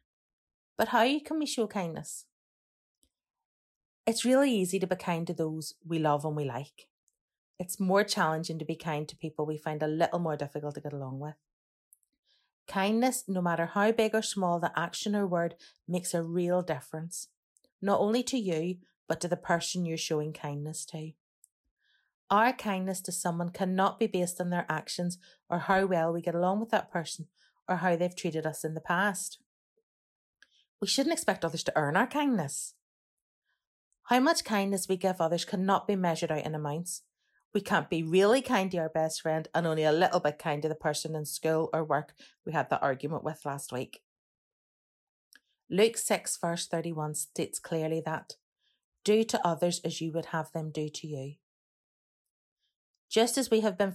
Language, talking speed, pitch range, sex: English, 180 wpm, 155-195 Hz, female